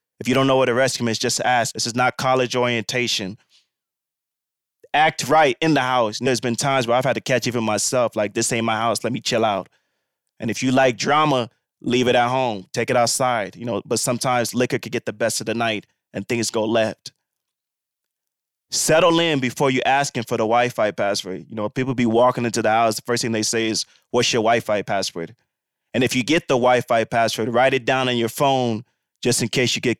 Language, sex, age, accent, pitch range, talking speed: English, male, 20-39, American, 115-135 Hz, 230 wpm